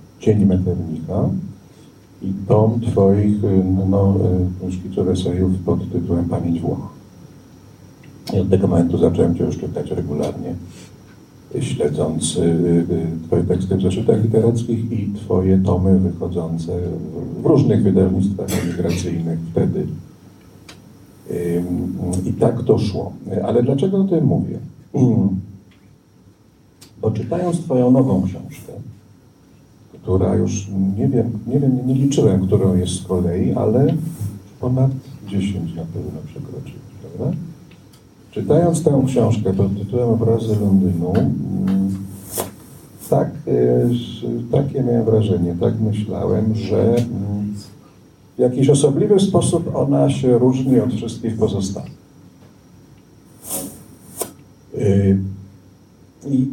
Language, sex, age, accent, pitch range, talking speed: Polish, male, 50-69, native, 90-120 Hz, 95 wpm